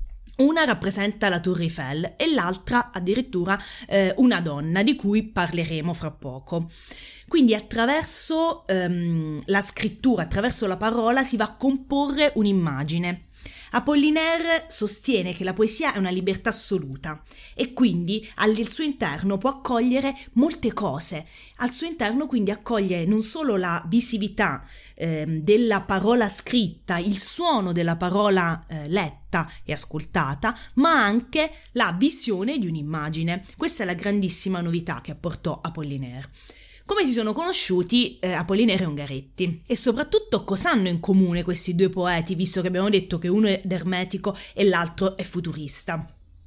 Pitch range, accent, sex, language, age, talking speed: 175-240 Hz, native, female, Italian, 20-39, 140 wpm